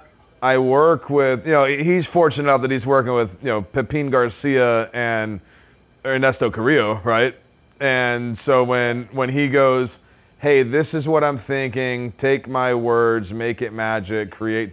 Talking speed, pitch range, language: 160 wpm, 115-135 Hz, English